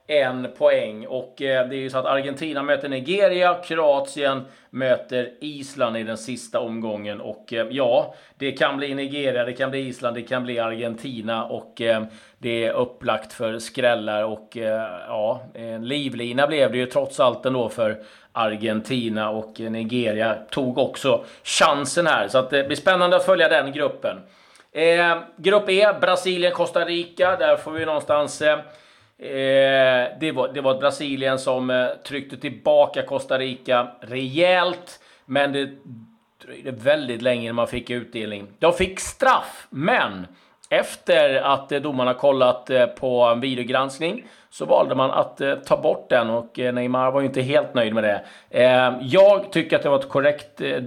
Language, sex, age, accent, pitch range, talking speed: Swedish, male, 30-49, native, 120-145 Hz, 165 wpm